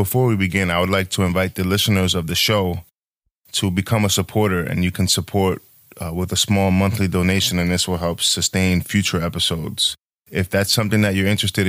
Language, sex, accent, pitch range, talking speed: English, male, American, 90-105 Hz, 205 wpm